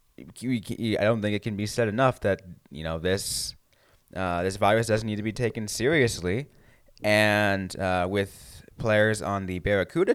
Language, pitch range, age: English, 85-115 Hz, 20-39